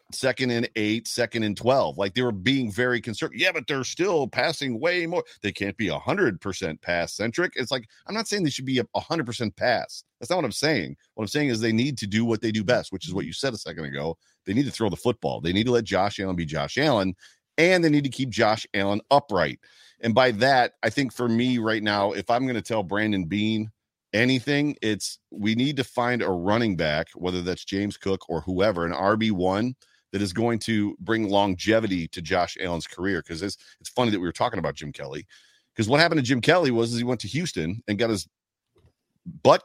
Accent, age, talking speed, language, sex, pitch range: American, 40-59, 235 wpm, English, male, 100-125 Hz